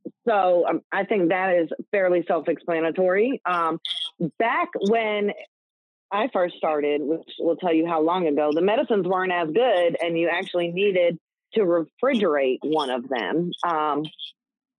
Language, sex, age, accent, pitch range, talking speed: English, female, 30-49, American, 165-210 Hz, 140 wpm